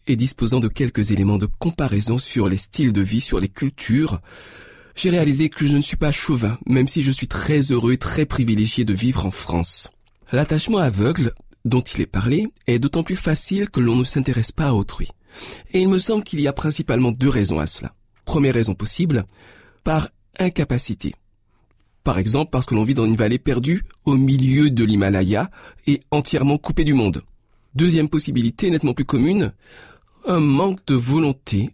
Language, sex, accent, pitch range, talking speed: French, male, French, 110-150 Hz, 185 wpm